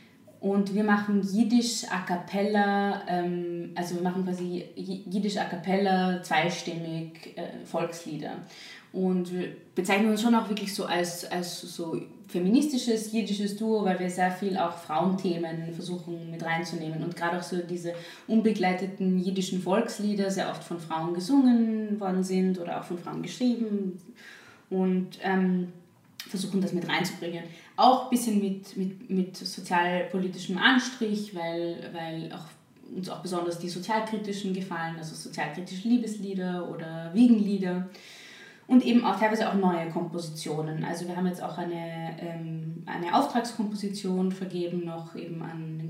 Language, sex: English, female